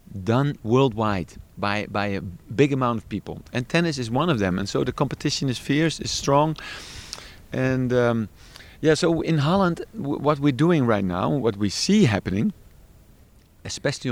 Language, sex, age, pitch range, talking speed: English, male, 50-69, 105-145 Hz, 165 wpm